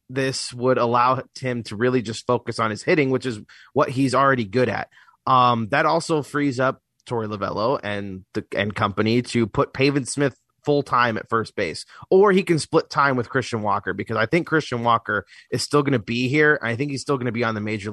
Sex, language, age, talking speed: male, English, 30-49, 225 wpm